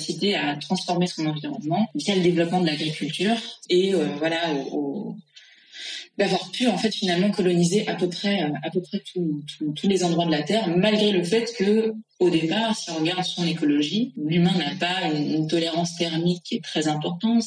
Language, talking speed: French, 175 wpm